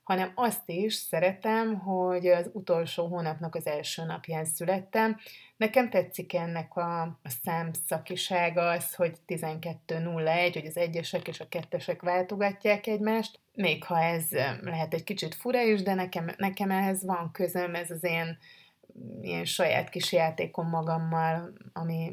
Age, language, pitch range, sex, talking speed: 30-49, Hungarian, 160-185 Hz, female, 140 wpm